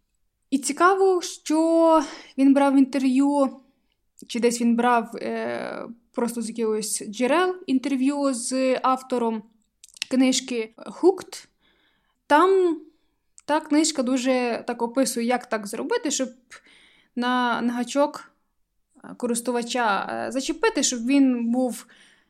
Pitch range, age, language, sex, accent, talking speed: 240-290 Hz, 20-39, Ukrainian, female, native, 100 wpm